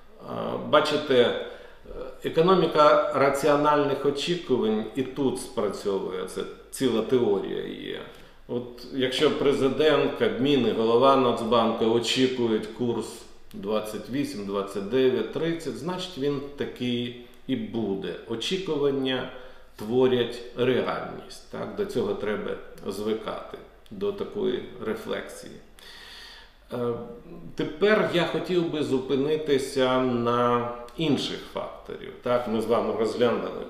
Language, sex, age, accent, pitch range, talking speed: Ukrainian, male, 40-59, native, 120-165 Hz, 85 wpm